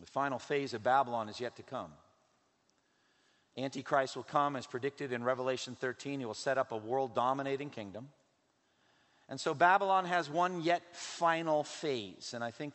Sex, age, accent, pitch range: male, 50-69, American, 130-170 Hz